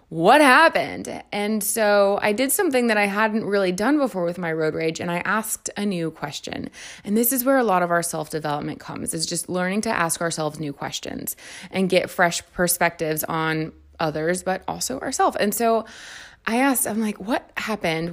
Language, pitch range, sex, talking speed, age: English, 165-205 Hz, female, 190 wpm, 20-39